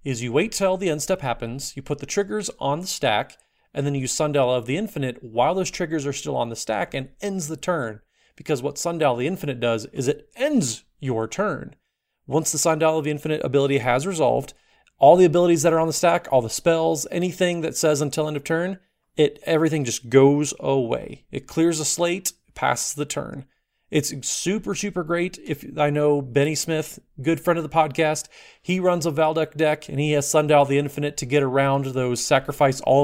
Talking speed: 210 wpm